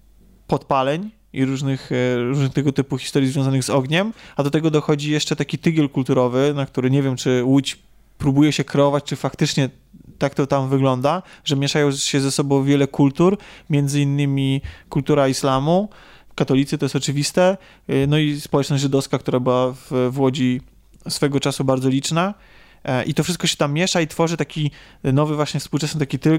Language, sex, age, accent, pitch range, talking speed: Polish, male, 20-39, native, 140-170 Hz, 165 wpm